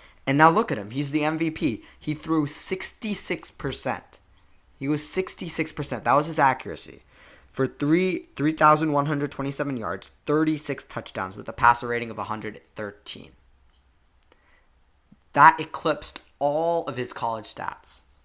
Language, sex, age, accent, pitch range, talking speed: English, male, 20-39, American, 120-155 Hz, 120 wpm